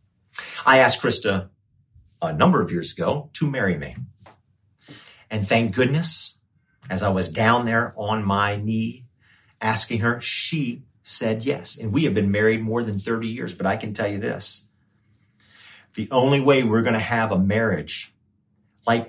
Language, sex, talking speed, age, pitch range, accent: English, male, 160 wpm, 40-59, 105-140 Hz, American